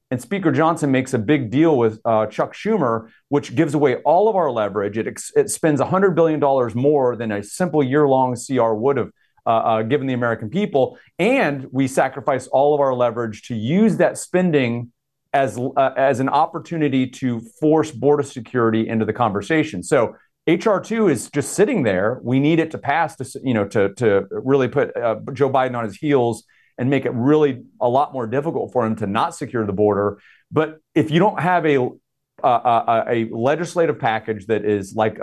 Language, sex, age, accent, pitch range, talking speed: English, male, 40-59, American, 120-160 Hz, 195 wpm